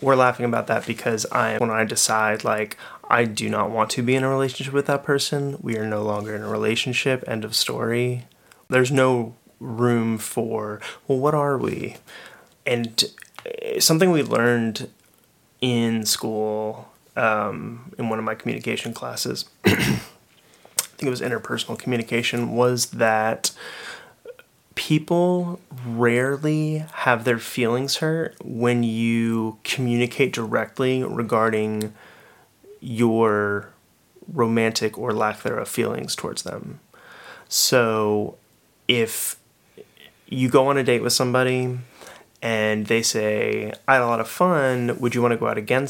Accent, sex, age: American, male, 30-49